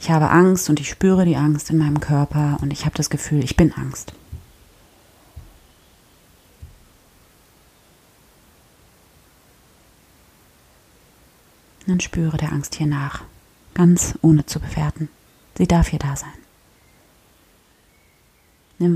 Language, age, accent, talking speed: German, 30-49, German, 110 wpm